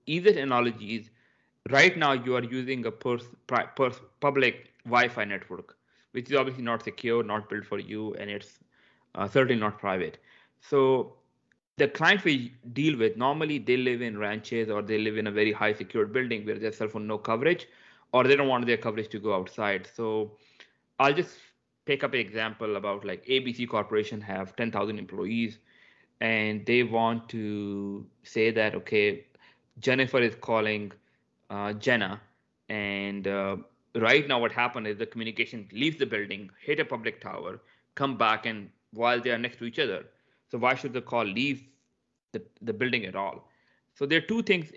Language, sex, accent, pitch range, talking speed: English, male, Indian, 105-125 Hz, 180 wpm